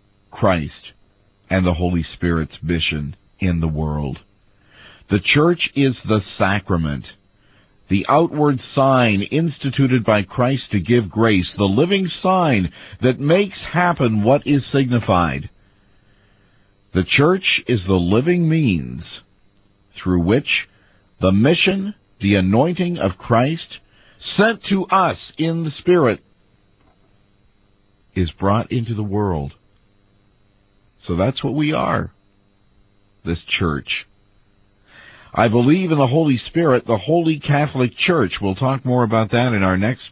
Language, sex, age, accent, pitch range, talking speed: English, male, 50-69, American, 100-135 Hz, 125 wpm